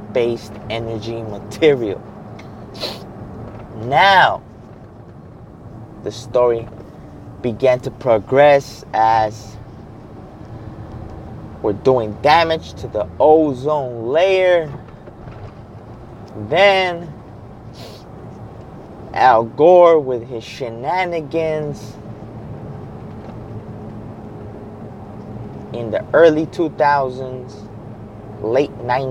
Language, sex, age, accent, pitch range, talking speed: English, male, 20-39, American, 110-145 Hz, 60 wpm